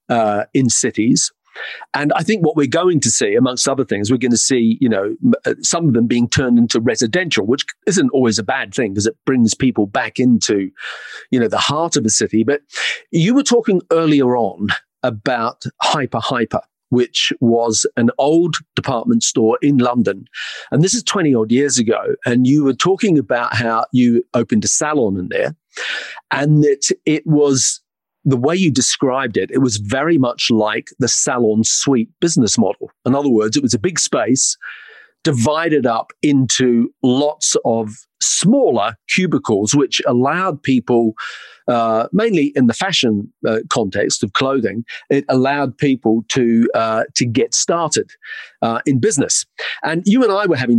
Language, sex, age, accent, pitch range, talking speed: English, male, 40-59, British, 115-150 Hz, 170 wpm